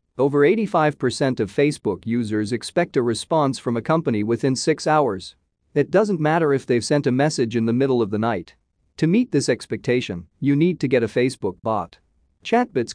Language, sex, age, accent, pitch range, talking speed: English, male, 40-59, American, 110-150 Hz, 185 wpm